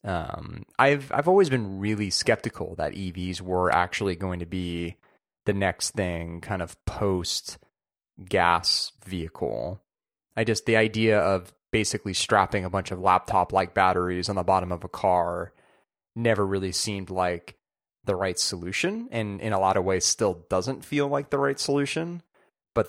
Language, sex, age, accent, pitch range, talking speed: English, male, 30-49, American, 90-110 Hz, 165 wpm